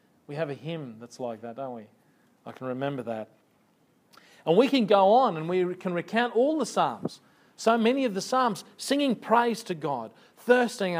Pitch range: 140-190 Hz